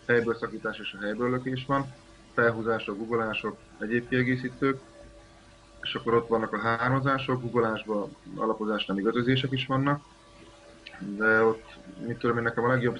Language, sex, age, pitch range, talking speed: Hungarian, male, 20-39, 105-125 Hz, 145 wpm